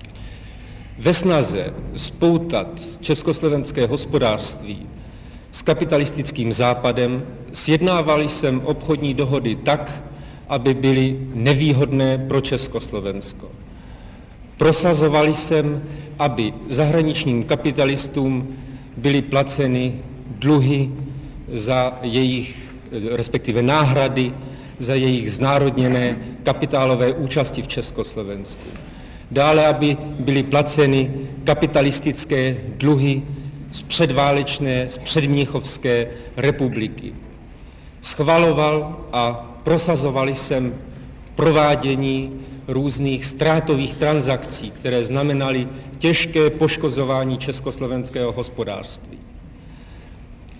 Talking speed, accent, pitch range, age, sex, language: 75 wpm, native, 125-150 Hz, 50-69, male, Czech